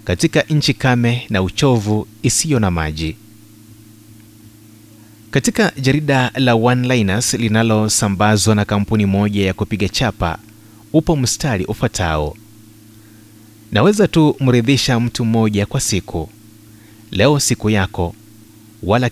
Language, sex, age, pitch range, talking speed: Swahili, male, 30-49, 105-120 Hz, 105 wpm